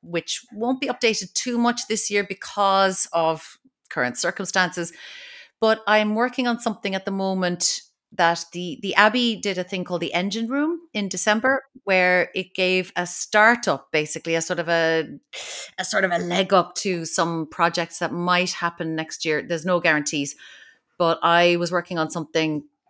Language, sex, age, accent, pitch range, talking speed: English, female, 30-49, Irish, 160-205 Hz, 175 wpm